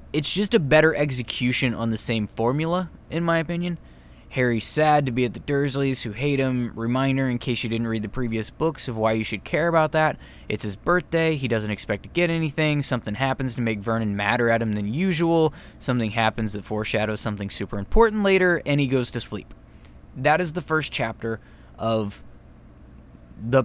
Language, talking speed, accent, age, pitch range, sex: English, 195 wpm, American, 20-39, 110-160 Hz, male